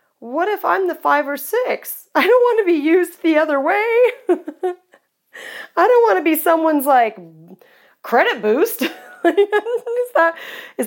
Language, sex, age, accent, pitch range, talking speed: English, female, 40-59, American, 210-330 Hz, 155 wpm